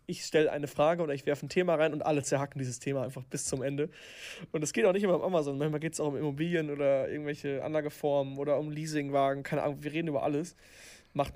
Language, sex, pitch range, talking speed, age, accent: German, male, 140-165 Hz, 245 wpm, 20-39, German